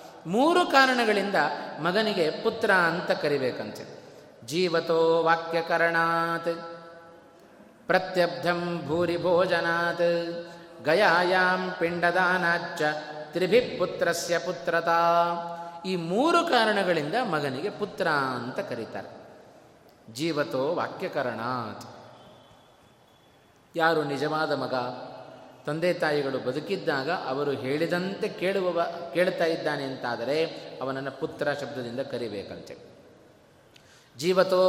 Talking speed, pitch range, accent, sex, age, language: 65 wpm, 155-215 Hz, native, male, 20-39, Kannada